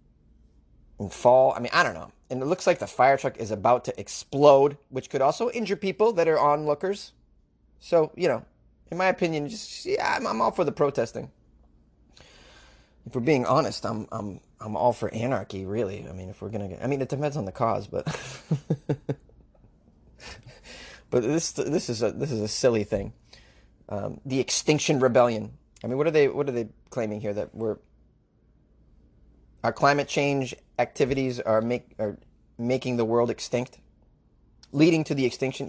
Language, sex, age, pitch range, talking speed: English, male, 30-49, 105-145 Hz, 175 wpm